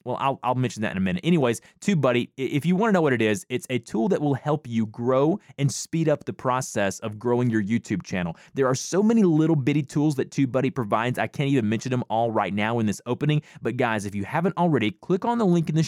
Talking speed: 260 wpm